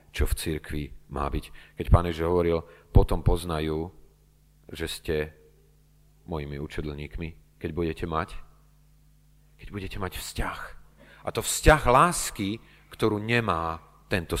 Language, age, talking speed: Slovak, 40-59, 115 wpm